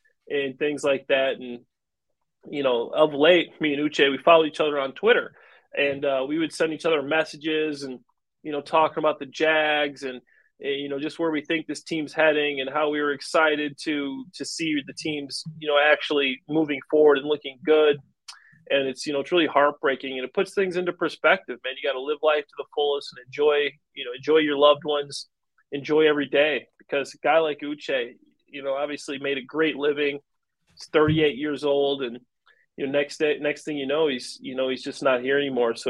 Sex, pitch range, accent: male, 135-155 Hz, American